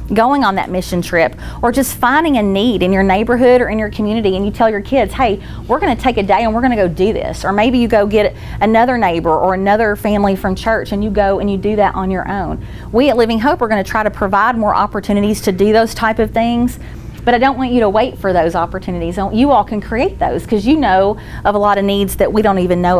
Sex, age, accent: female, 30-49, American